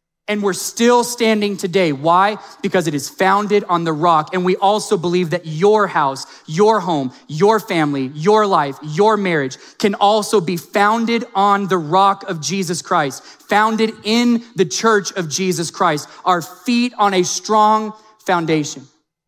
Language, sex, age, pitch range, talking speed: English, male, 20-39, 170-210 Hz, 160 wpm